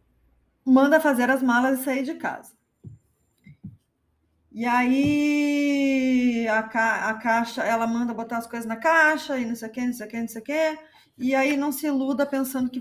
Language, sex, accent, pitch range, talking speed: Portuguese, female, Brazilian, 210-260 Hz, 190 wpm